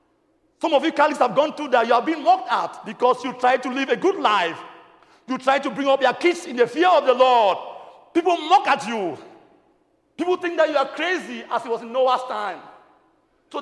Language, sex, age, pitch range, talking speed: English, male, 50-69, 255-330 Hz, 225 wpm